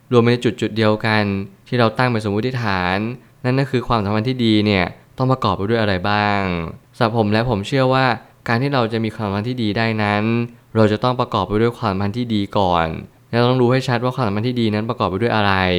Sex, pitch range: male, 100-125 Hz